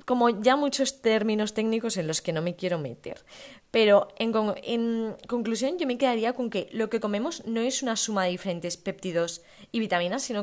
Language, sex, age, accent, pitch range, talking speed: Spanish, female, 20-39, Spanish, 170-225 Hz, 195 wpm